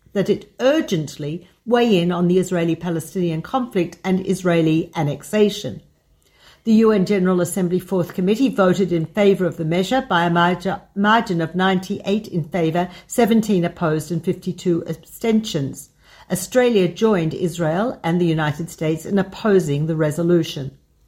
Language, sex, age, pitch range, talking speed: Hebrew, female, 60-79, 170-205 Hz, 135 wpm